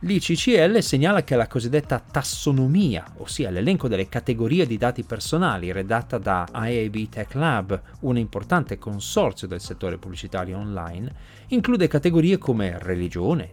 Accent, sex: native, male